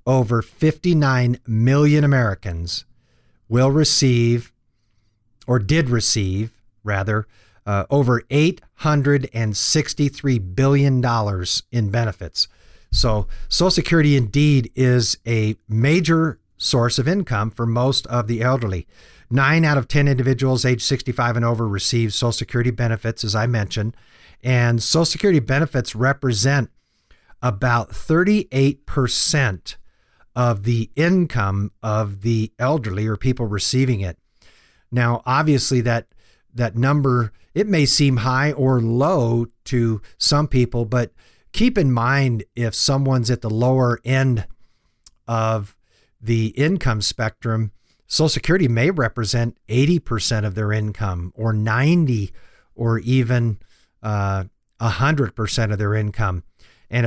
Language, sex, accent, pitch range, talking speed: English, male, American, 110-135 Hz, 120 wpm